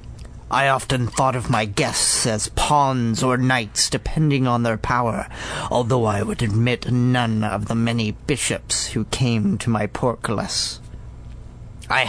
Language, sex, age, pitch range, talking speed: English, male, 40-59, 110-140 Hz, 145 wpm